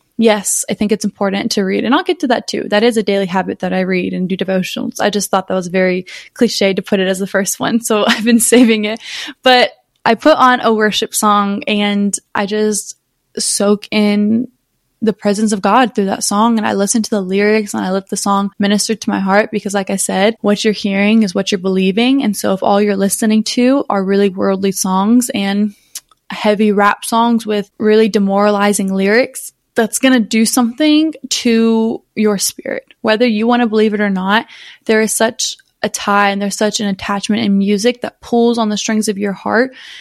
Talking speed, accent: 215 wpm, American